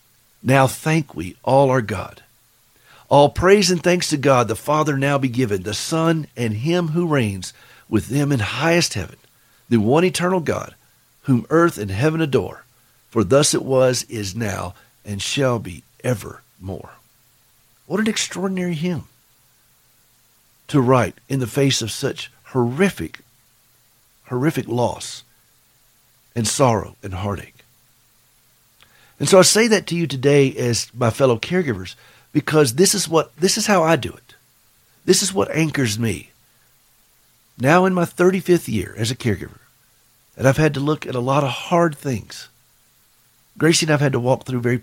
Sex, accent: male, American